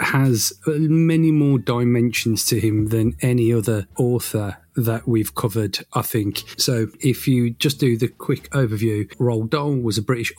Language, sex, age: English, male, 30-49